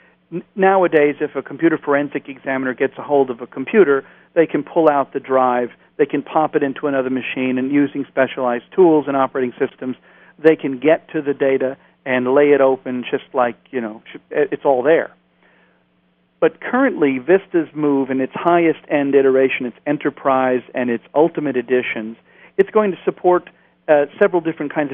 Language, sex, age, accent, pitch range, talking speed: English, male, 50-69, American, 135-155 Hz, 175 wpm